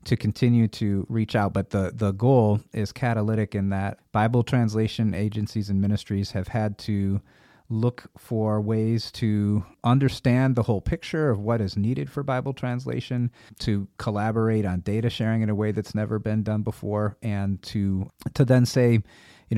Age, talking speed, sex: 30-49, 170 wpm, male